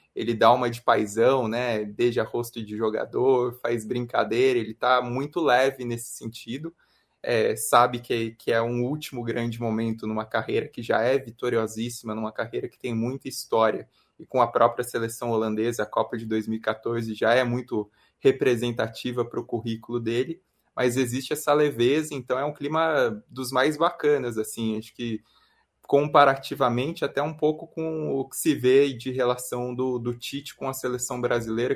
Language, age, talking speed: Portuguese, 20-39, 170 wpm